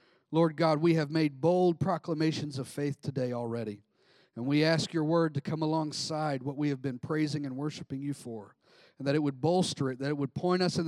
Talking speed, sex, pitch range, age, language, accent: 220 wpm, male, 140-185 Hz, 40-59, English, American